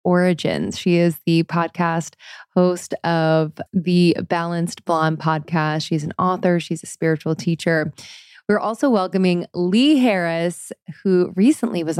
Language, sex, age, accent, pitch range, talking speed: English, female, 20-39, American, 165-205 Hz, 130 wpm